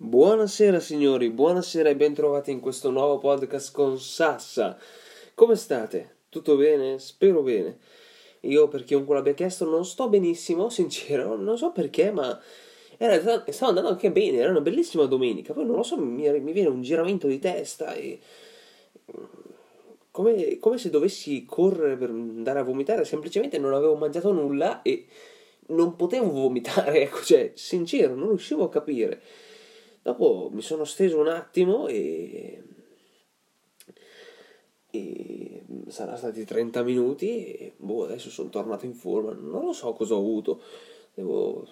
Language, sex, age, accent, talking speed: Italian, male, 20-39, native, 145 wpm